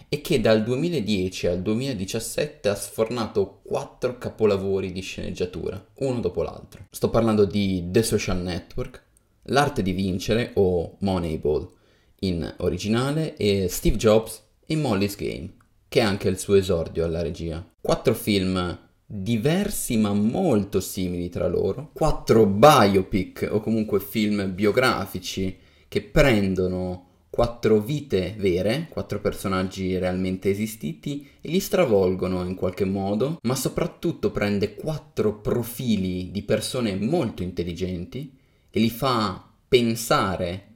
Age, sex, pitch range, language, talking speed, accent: 20-39, male, 95-115 Hz, Italian, 125 wpm, native